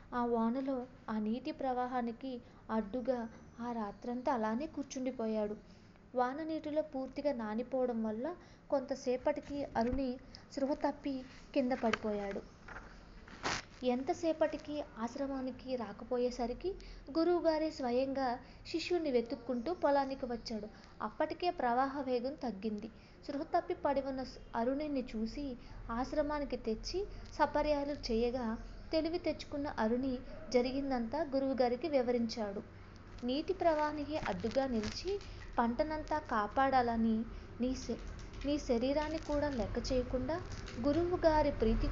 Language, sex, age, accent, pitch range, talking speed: English, female, 20-39, Indian, 230-295 Hz, 100 wpm